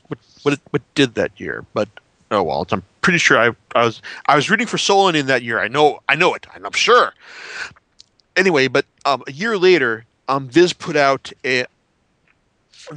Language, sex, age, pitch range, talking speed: English, male, 40-59, 115-160 Hz, 185 wpm